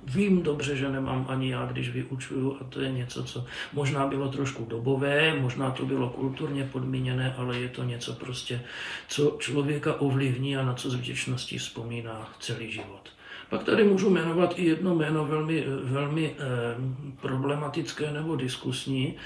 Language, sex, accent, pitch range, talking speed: Czech, male, native, 130-150 Hz, 160 wpm